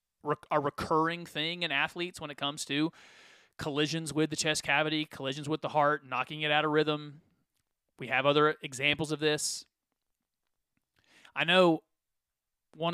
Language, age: English, 30-49